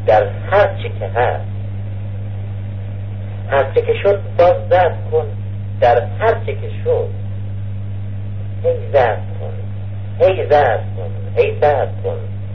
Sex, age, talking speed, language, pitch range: male, 60-79, 100 wpm, Persian, 100-105 Hz